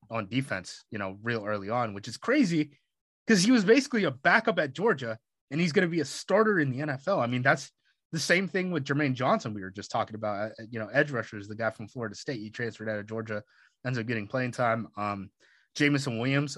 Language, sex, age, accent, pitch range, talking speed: English, male, 20-39, American, 110-145 Hz, 230 wpm